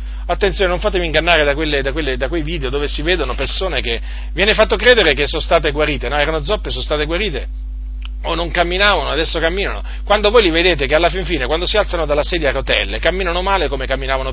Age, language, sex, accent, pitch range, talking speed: 40-59, Italian, male, native, 135-175 Hz, 220 wpm